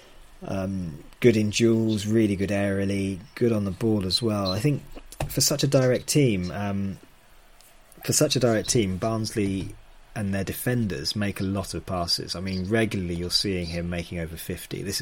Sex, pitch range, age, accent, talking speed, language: male, 90-115 Hz, 30-49, British, 180 wpm, English